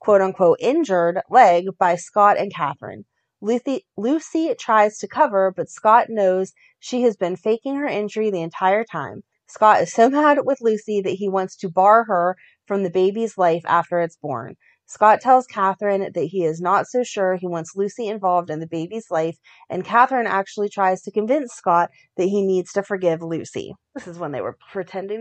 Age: 30-49